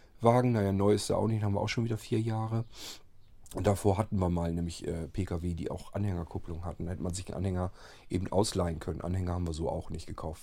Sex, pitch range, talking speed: male, 95-110 Hz, 245 wpm